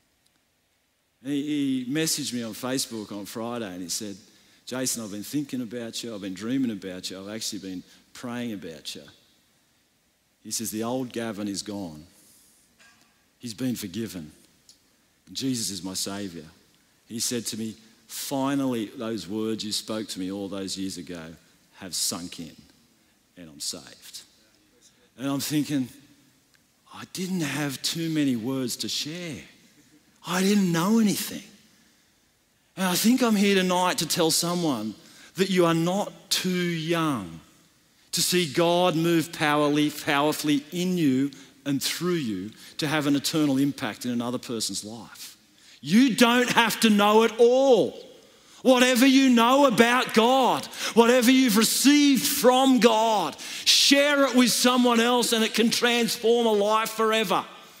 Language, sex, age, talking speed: English, male, 50-69, 145 wpm